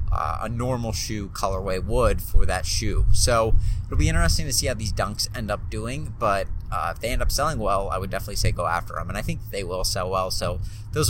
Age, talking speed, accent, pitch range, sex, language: 30-49, 245 wpm, American, 95-110 Hz, male, English